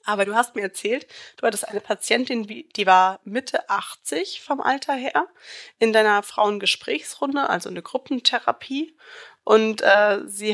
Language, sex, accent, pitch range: German, female, German, 200-240 Hz